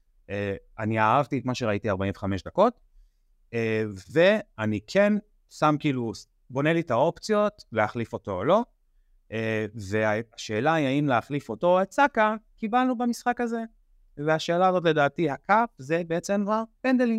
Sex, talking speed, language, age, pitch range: male, 145 wpm, Hebrew, 30-49, 100-145 Hz